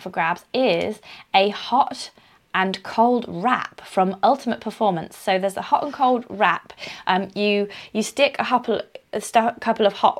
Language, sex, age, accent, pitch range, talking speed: English, female, 20-39, British, 185-225 Hz, 175 wpm